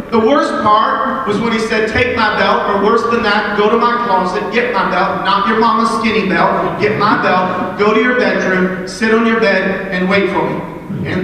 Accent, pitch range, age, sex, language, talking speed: American, 210-255 Hz, 40-59, male, English, 225 wpm